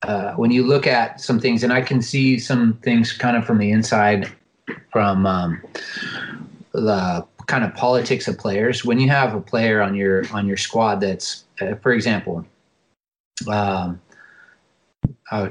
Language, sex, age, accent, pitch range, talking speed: English, male, 30-49, American, 100-130 Hz, 160 wpm